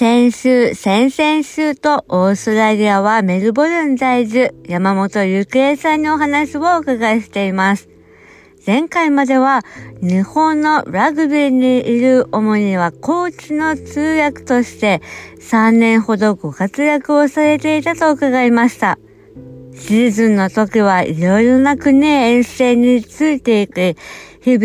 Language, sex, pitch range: English, female, 200-280 Hz